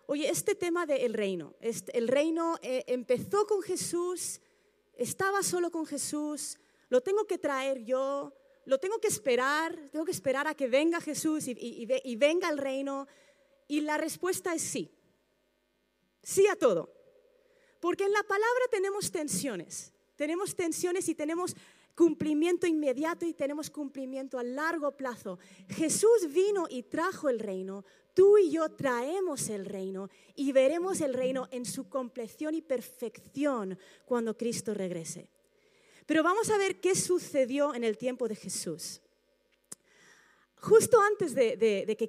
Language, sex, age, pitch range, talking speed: Spanish, female, 30-49, 245-360 Hz, 155 wpm